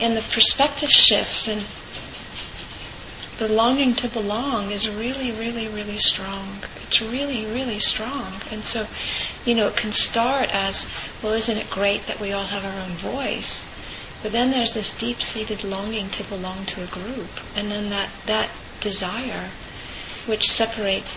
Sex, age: female, 40-59